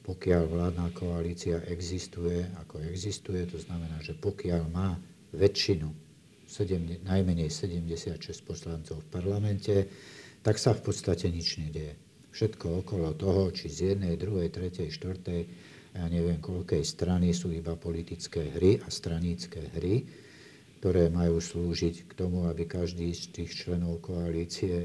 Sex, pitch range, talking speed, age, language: male, 85-95 Hz, 135 wpm, 50-69, Slovak